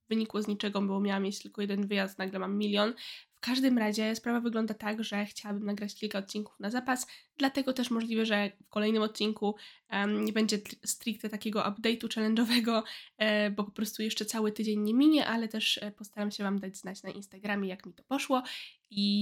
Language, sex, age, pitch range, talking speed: Polish, female, 20-39, 205-235 Hz, 185 wpm